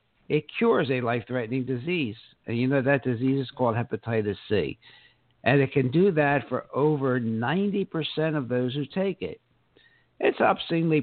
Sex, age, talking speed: male, 60-79, 160 wpm